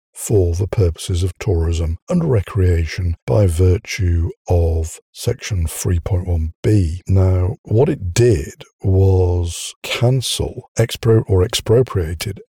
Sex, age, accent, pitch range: male, 60-79, British, 85-110 Hz